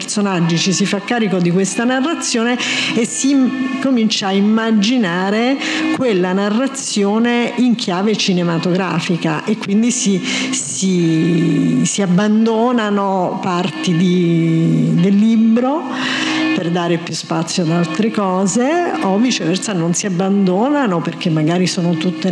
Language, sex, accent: Italian, female, native